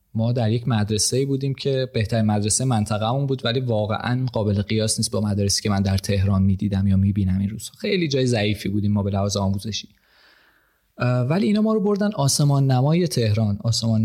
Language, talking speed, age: Persian, 185 wpm, 20-39